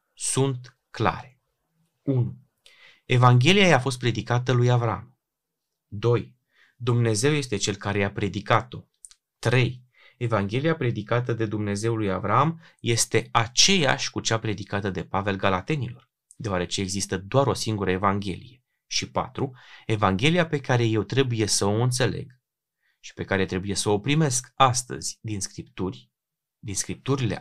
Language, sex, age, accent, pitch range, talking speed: Romanian, male, 30-49, native, 100-135 Hz, 130 wpm